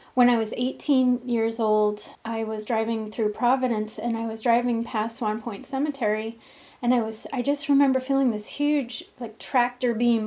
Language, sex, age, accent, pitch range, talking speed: English, female, 30-49, American, 220-255 Hz, 180 wpm